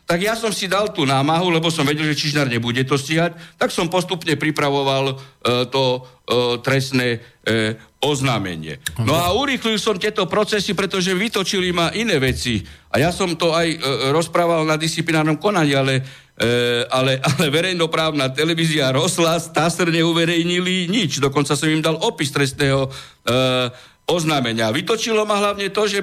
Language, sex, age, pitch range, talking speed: Slovak, male, 60-79, 135-180 Hz, 160 wpm